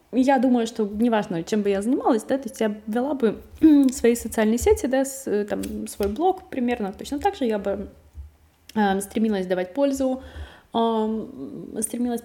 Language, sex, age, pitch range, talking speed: Russian, female, 20-39, 195-235 Hz, 170 wpm